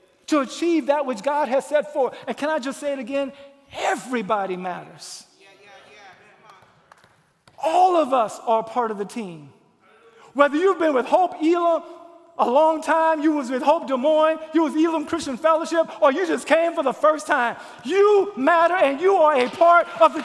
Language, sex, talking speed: English, male, 185 wpm